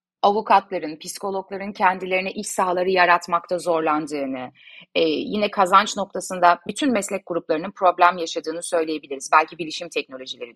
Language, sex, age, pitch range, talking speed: Turkish, female, 30-49, 170-230 Hz, 110 wpm